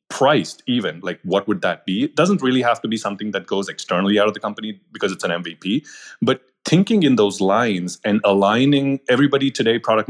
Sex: male